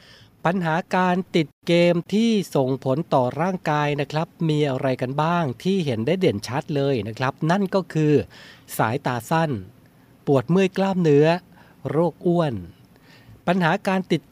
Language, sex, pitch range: Thai, male, 130-170 Hz